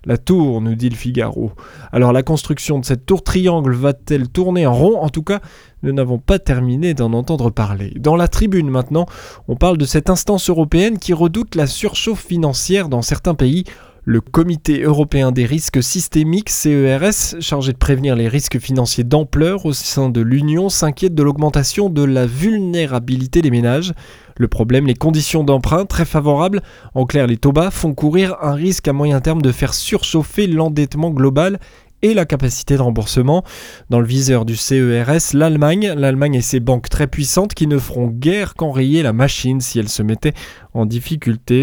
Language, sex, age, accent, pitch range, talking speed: French, male, 20-39, French, 130-170 Hz, 180 wpm